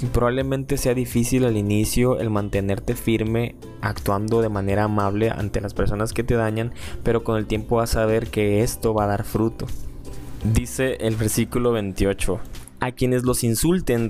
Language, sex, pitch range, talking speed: Spanish, male, 105-125 Hz, 165 wpm